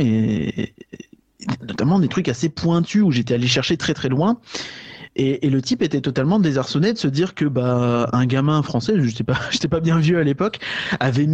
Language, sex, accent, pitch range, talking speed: French, male, French, 125-170 Hz, 200 wpm